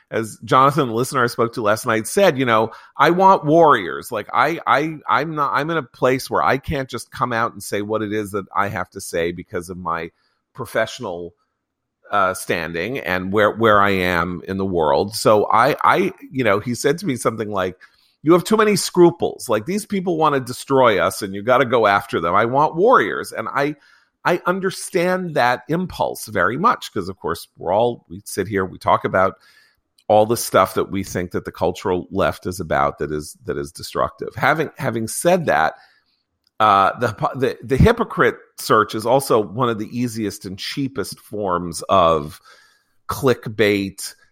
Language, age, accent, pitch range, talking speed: English, 40-59, American, 100-140 Hz, 190 wpm